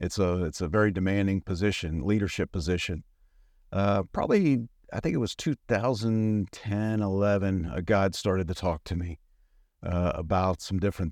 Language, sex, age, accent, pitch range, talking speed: English, male, 50-69, American, 90-105 Hz, 150 wpm